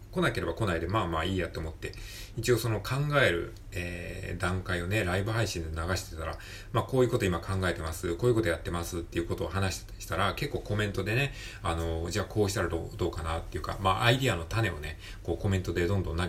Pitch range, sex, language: 85-115 Hz, male, Japanese